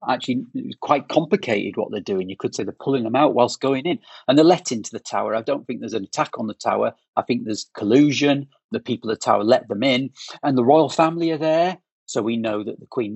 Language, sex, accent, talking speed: English, male, British, 250 wpm